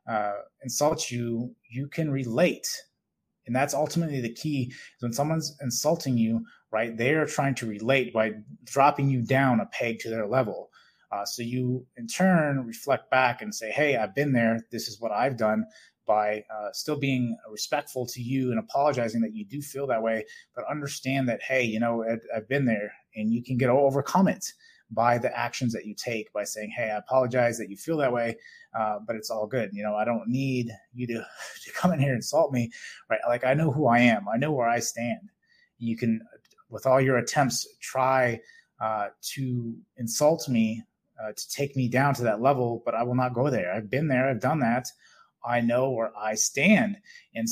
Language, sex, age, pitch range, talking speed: English, male, 30-49, 115-140 Hz, 205 wpm